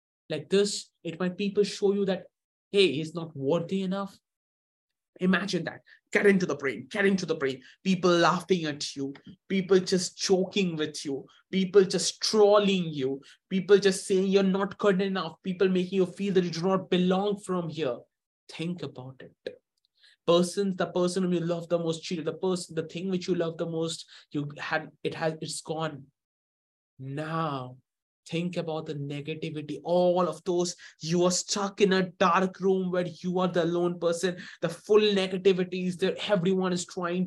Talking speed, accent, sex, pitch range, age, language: 175 wpm, Indian, male, 160-190 Hz, 20-39, English